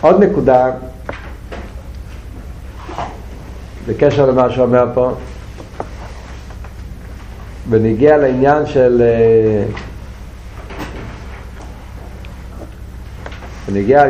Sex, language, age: male, Hebrew, 60-79